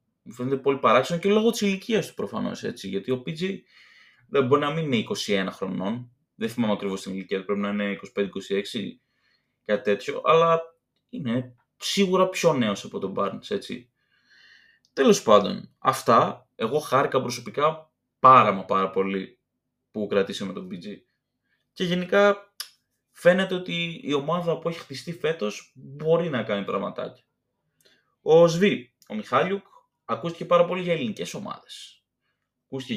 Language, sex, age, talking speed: Greek, male, 20-39, 140 wpm